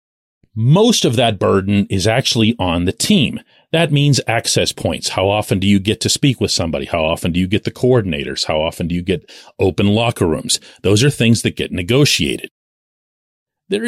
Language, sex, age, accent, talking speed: English, male, 40-59, American, 190 wpm